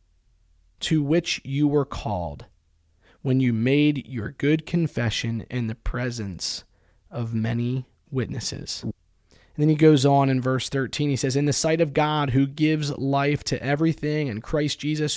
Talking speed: 160 wpm